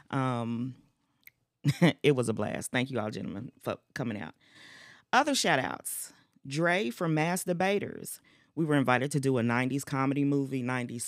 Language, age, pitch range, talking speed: English, 40-59, 120-155 Hz, 155 wpm